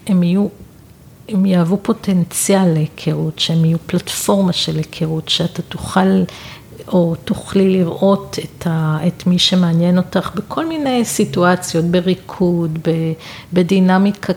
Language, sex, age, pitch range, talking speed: Hebrew, female, 50-69, 165-190 Hz, 115 wpm